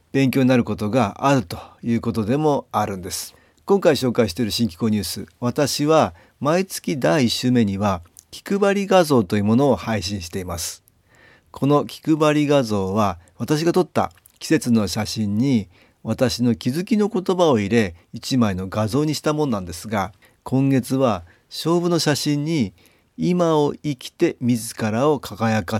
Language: Japanese